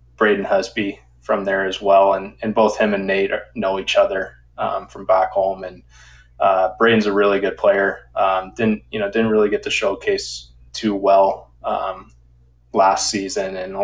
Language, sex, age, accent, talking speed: English, male, 20-39, American, 180 wpm